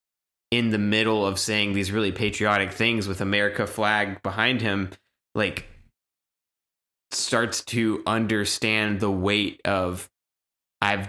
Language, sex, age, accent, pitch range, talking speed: English, male, 20-39, American, 95-110 Hz, 120 wpm